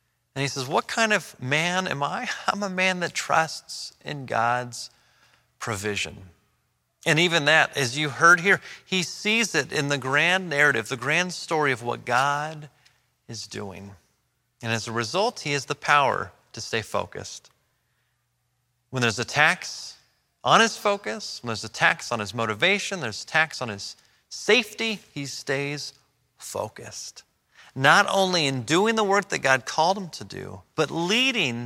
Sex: male